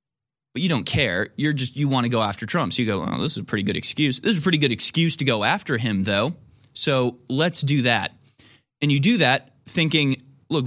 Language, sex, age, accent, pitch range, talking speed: English, male, 20-39, American, 110-140 Hz, 240 wpm